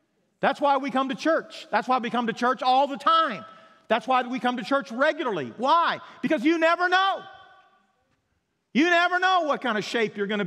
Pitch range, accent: 210-315 Hz, American